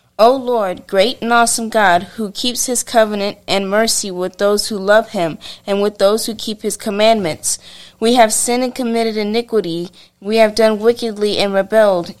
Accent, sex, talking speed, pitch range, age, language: American, female, 175 wpm, 195-225 Hz, 30-49, English